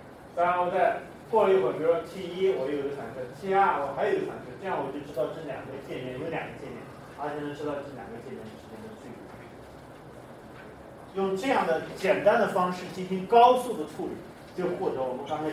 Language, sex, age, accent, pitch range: Chinese, male, 30-49, native, 145-185 Hz